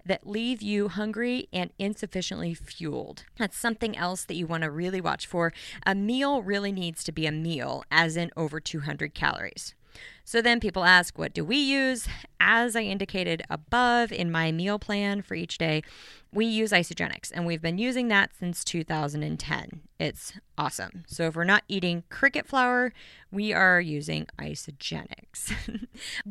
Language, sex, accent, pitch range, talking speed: English, female, American, 165-220 Hz, 160 wpm